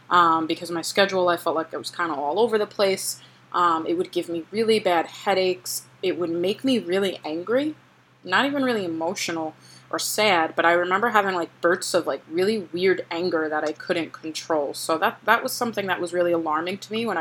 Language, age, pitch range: English, 20-39, 165-195 Hz